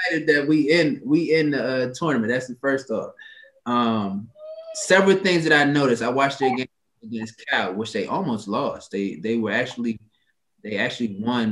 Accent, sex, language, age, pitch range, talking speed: American, male, English, 20-39, 115-160 Hz, 170 wpm